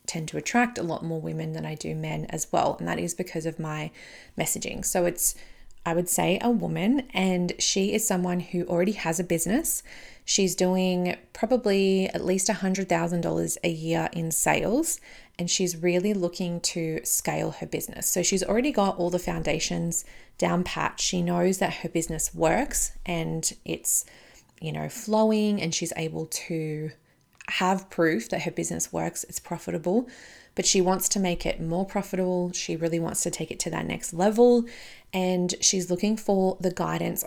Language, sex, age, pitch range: English, female, 30-49, 165-195 Hz